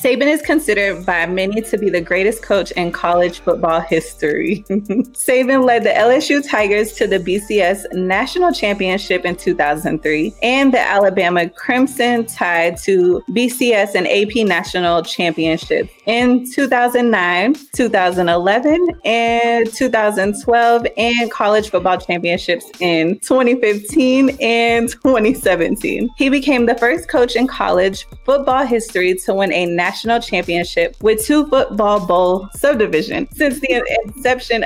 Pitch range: 180-245 Hz